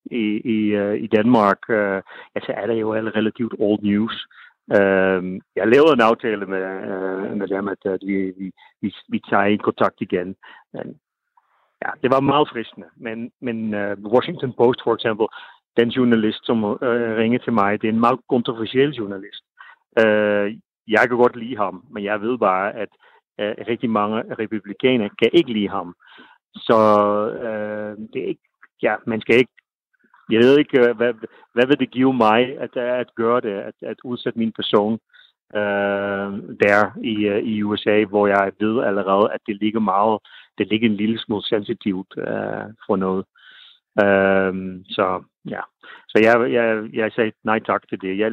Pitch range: 100-115 Hz